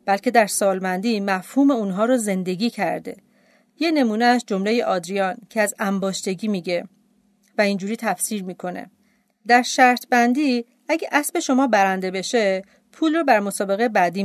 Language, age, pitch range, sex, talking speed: Persian, 40-59, 195-255 Hz, female, 145 wpm